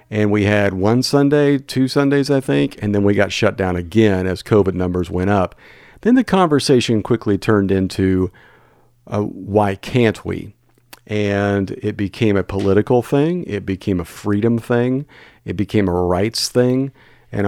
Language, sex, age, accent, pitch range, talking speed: English, male, 50-69, American, 95-120 Hz, 165 wpm